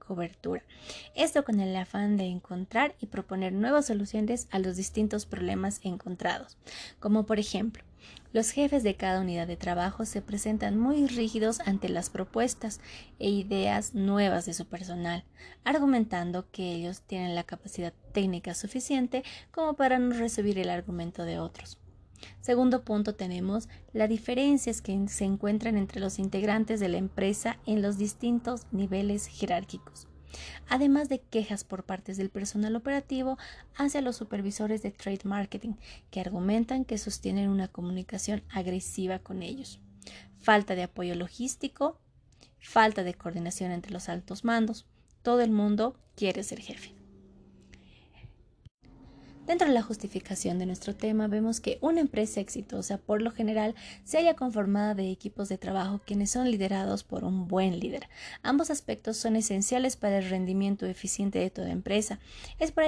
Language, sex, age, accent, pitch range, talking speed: Spanish, female, 20-39, Mexican, 185-225 Hz, 150 wpm